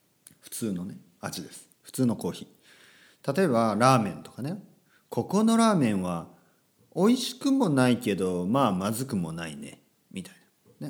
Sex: male